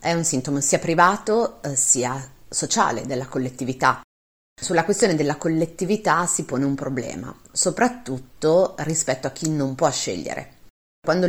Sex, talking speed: female, 135 wpm